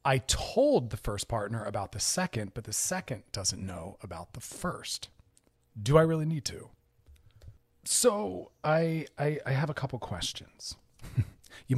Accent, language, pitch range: American, English, 110-150 Hz